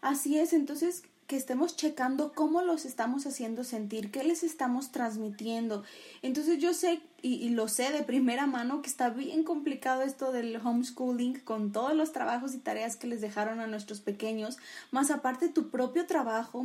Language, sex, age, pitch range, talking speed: Spanish, female, 20-39, 230-305 Hz, 175 wpm